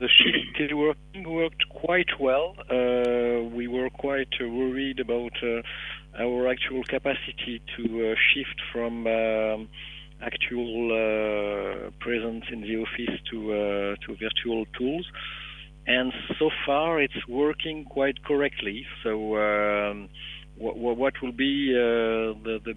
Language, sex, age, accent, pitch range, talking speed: English, male, 50-69, French, 105-130 Hz, 135 wpm